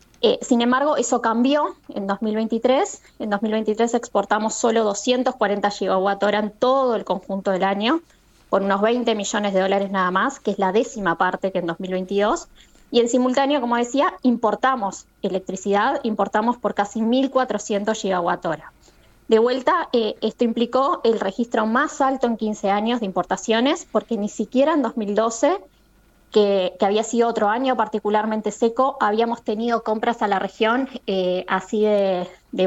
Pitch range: 200-250 Hz